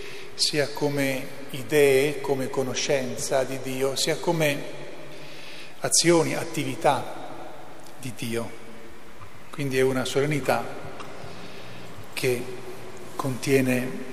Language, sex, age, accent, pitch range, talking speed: Italian, male, 40-59, native, 125-150 Hz, 80 wpm